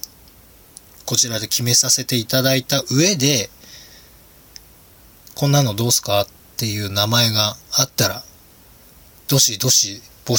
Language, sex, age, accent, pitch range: Japanese, male, 20-39, native, 105-145 Hz